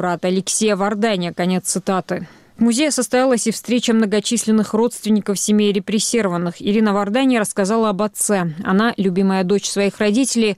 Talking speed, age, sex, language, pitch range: 130 wpm, 20-39, female, Russian, 195-225 Hz